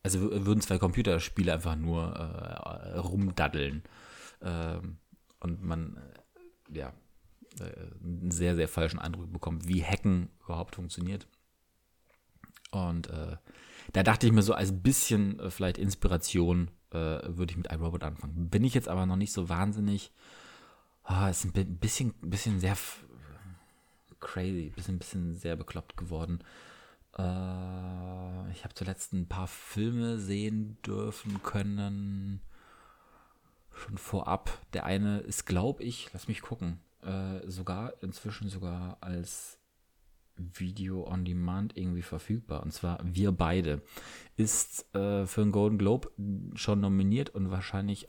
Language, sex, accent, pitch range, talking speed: German, male, German, 85-100 Hz, 130 wpm